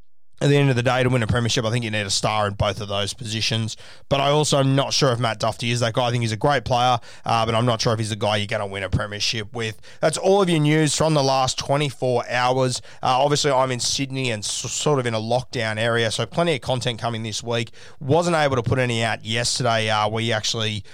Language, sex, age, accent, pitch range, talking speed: English, male, 20-39, Australian, 110-130 Hz, 270 wpm